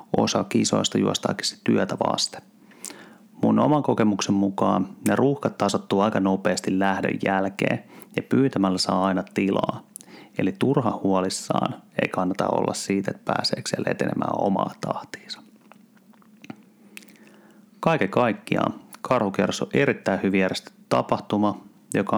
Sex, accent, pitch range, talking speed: male, native, 100-130 Hz, 115 wpm